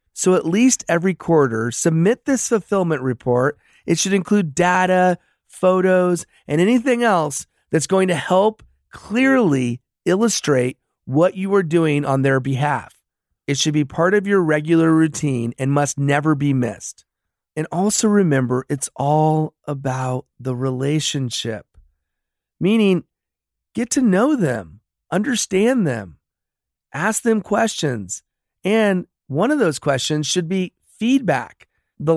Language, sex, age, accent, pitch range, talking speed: English, male, 40-59, American, 140-195 Hz, 130 wpm